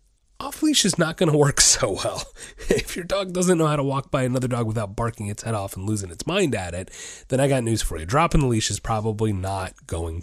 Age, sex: 30-49, male